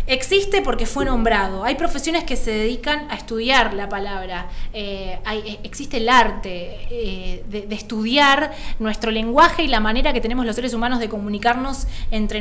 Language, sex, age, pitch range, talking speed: Spanish, female, 20-39, 215-285 Hz, 165 wpm